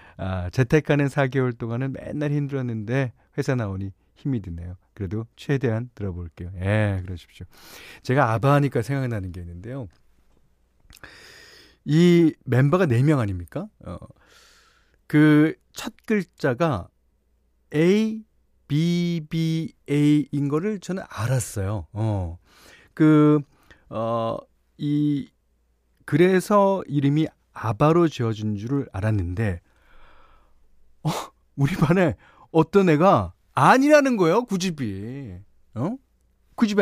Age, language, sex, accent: 40-59, Korean, male, native